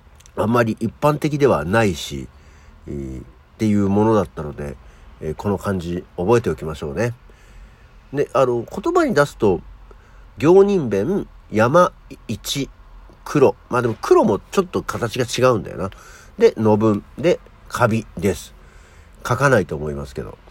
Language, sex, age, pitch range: Japanese, male, 50-69, 80-125 Hz